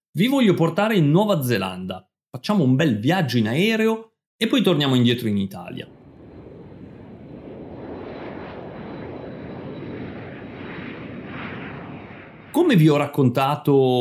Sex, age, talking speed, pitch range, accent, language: male, 30-49, 95 wpm, 110-155 Hz, native, Italian